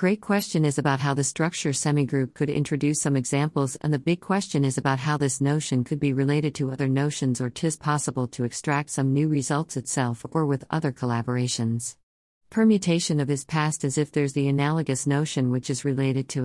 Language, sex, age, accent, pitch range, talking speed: English, female, 50-69, American, 130-160 Hz, 195 wpm